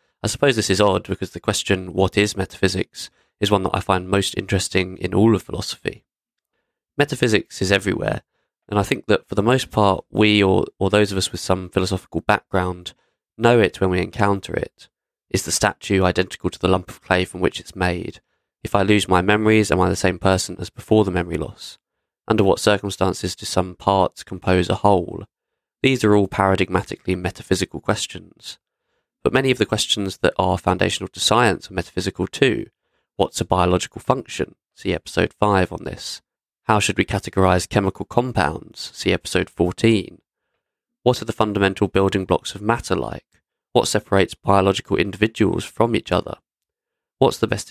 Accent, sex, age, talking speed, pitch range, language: British, male, 20-39, 180 wpm, 90-105 Hz, English